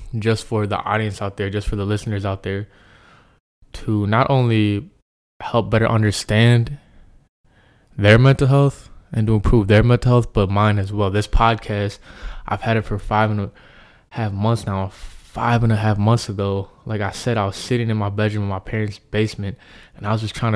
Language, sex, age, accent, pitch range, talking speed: English, male, 20-39, American, 100-110 Hz, 195 wpm